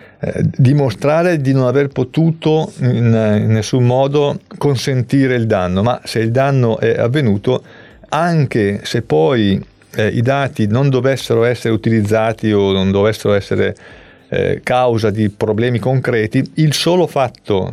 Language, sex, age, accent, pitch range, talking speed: Italian, male, 40-59, native, 110-145 Hz, 140 wpm